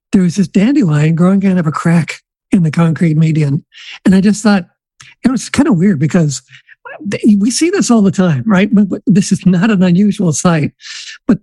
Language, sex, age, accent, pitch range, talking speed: English, male, 60-79, American, 180-220 Hz, 200 wpm